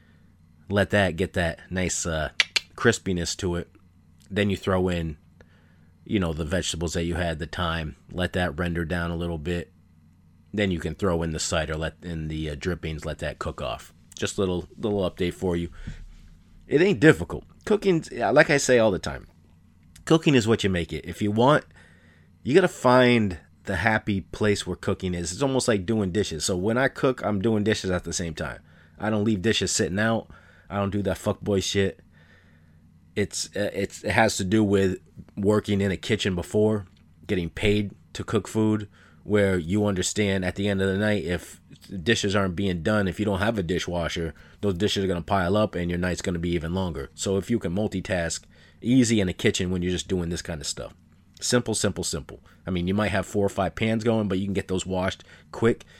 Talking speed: 210 wpm